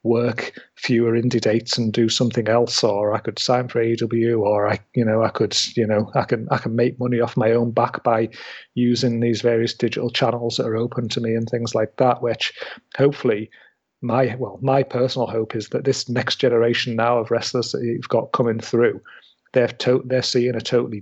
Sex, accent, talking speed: male, British, 205 wpm